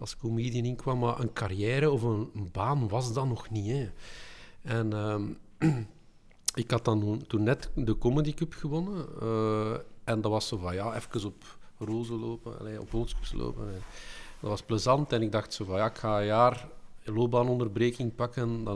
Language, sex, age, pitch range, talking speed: Dutch, male, 50-69, 110-150 Hz, 185 wpm